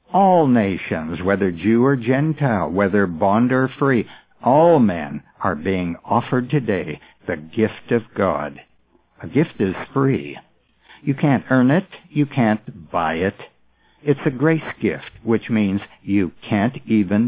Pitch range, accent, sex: 100-135 Hz, American, male